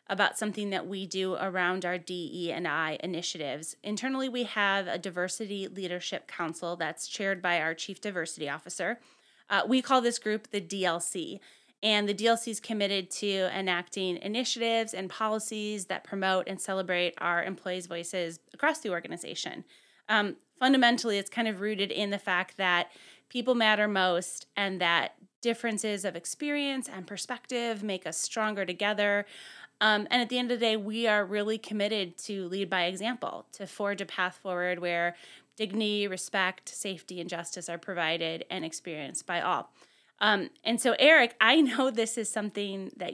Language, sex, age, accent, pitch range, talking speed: English, female, 20-39, American, 180-220 Hz, 165 wpm